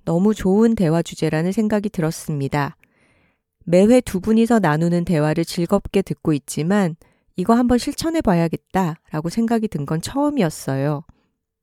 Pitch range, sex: 165-210 Hz, female